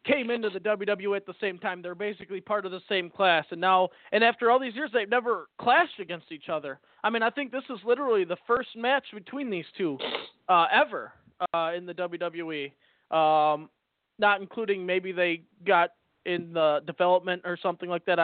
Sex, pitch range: male, 180-215 Hz